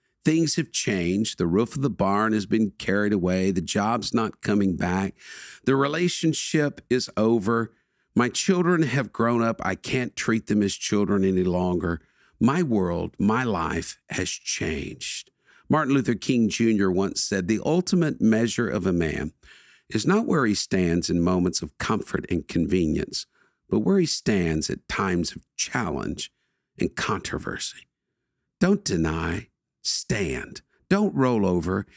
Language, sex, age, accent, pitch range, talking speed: English, male, 50-69, American, 90-140 Hz, 150 wpm